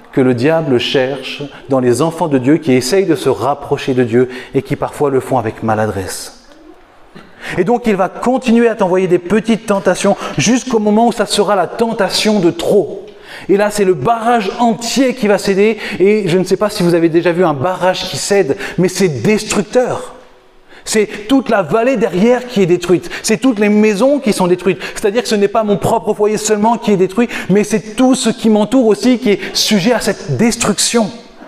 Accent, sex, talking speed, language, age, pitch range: French, male, 205 wpm, French, 30-49, 150-220 Hz